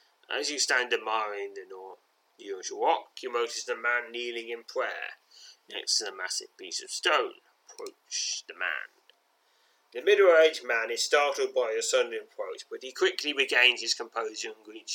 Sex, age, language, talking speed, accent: male, 30-49, English, 175 wpm, British